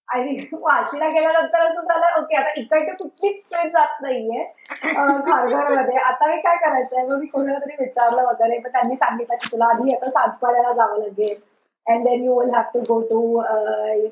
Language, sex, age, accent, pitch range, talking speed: Marathi, female, 20-39, native, 250-320 Hz, 175 wpm